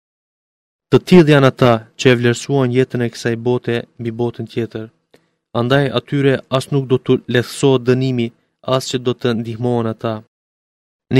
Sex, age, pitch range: male, 30-49, 120-130 Hz